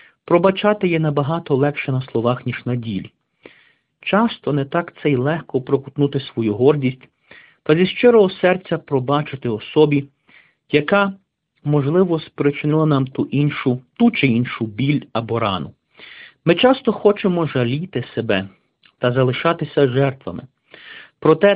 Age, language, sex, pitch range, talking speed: 50-69, Ukrainian, male, 120-160 Hz, 125 wpm